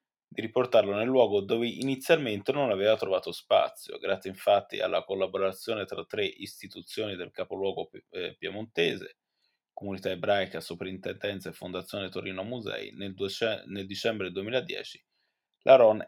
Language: Italian